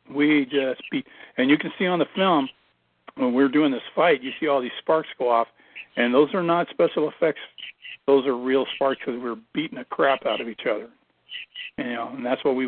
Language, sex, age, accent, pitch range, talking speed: English, male, 50-69, American, 125-145 Hz, 225 wpm